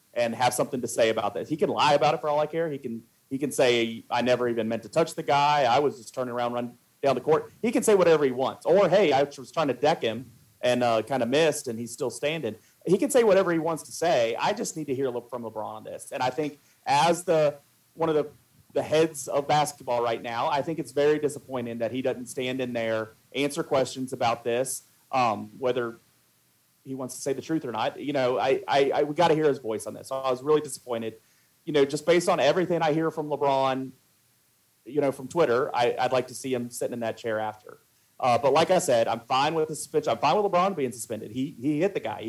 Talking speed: 260 wpm